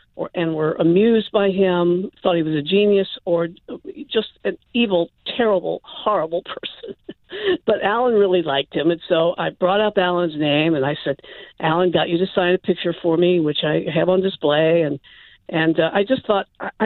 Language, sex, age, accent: English, female, 50-69, American